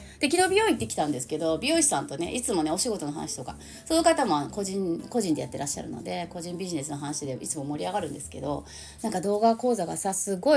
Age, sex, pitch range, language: 30-49, female, 180-290 Hz, Japanese